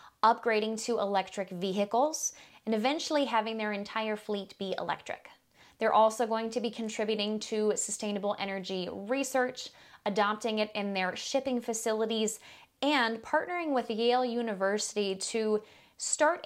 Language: English